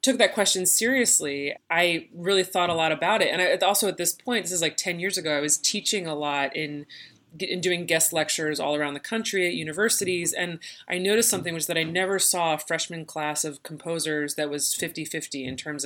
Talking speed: 225 wpm